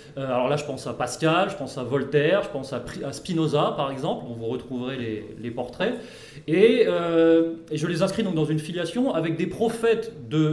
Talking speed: 205 wpm